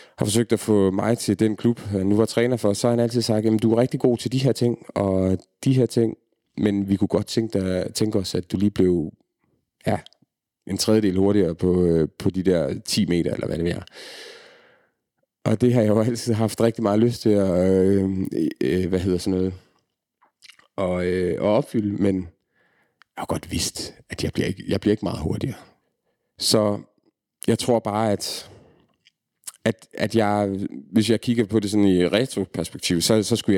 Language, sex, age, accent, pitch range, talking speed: Danish, male, 30-49, native, 95-115 Hz, 195 wpm